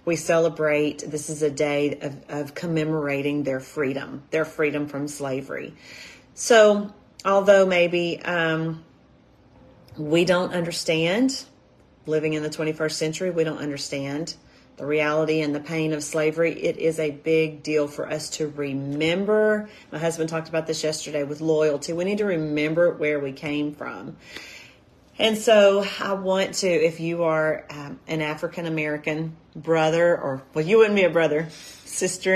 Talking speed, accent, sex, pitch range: 150 wpm, American, female, 150-175 Hz